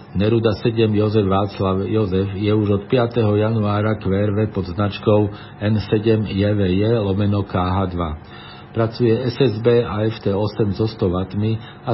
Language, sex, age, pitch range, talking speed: Slovak, male, 50-69, 95-115 Hz, 115 wpm